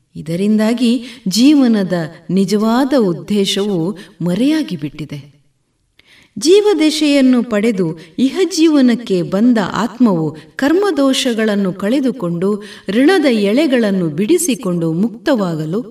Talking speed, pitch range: 65 wpm, 175-275 Hz